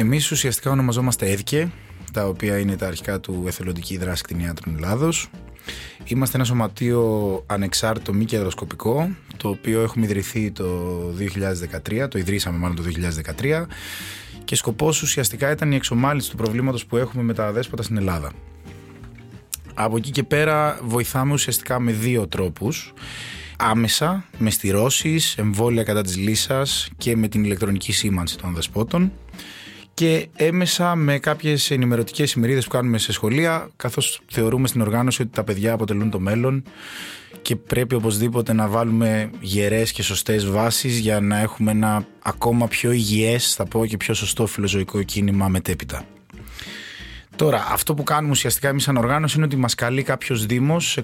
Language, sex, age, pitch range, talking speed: Greek, male, 20-39, 100-130 Hz, 150 wpm